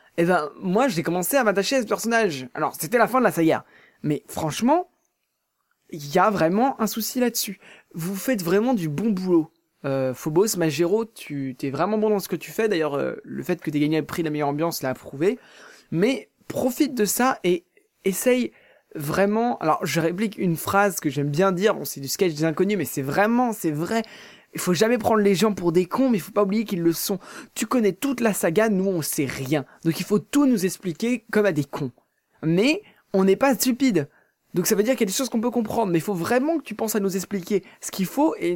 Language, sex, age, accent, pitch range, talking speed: French, male, 20-39, French, 170-240 Hz, 240 wpm